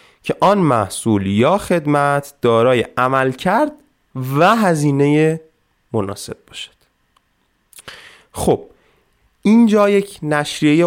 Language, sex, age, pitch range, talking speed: Persian, male, 20-39, 100-150 Hz, 90 wpm